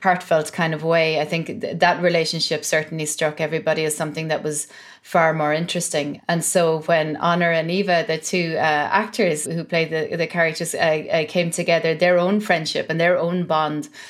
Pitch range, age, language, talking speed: 155-170 Hz, 30-49, English, 185 wpm